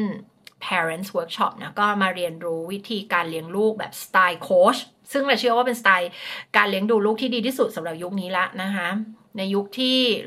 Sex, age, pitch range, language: female, 30-49, 190-240 Hz, Thai